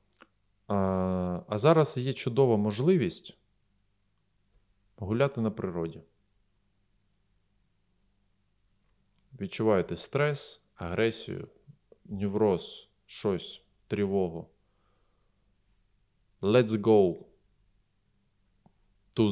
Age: 20-39